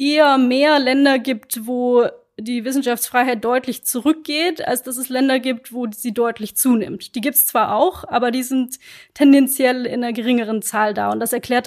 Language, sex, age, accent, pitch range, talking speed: German, female, 20-39, German, 240-270 Hz, 180 wpm